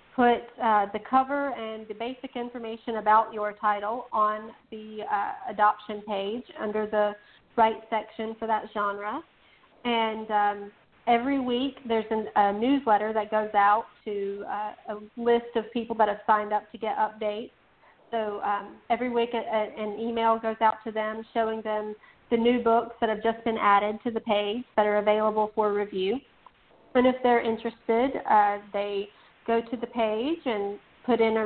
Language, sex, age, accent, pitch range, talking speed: English, female, 40-59, American, 210-230 Hz, 165 wpm